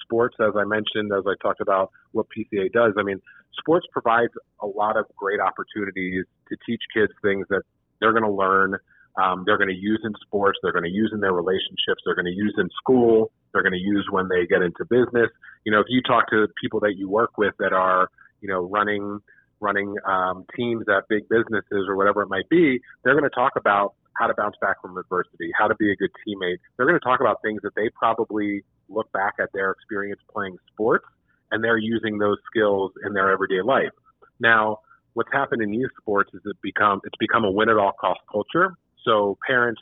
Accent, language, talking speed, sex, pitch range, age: American, English, 215 wpm, male, 95-115 Hz, 30-49